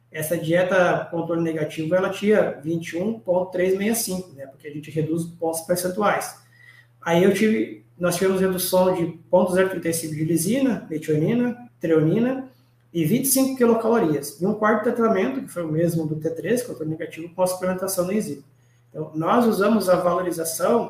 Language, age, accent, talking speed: Portuguese, 20-39, Brazilian, 140 wpm